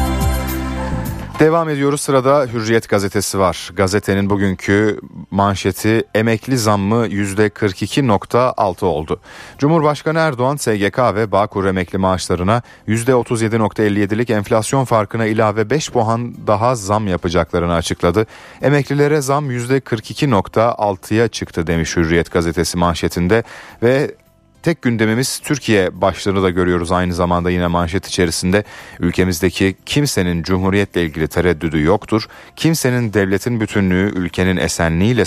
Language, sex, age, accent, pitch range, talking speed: Turkish, male, 30-49, native, 90-115 Hz, 105 wpm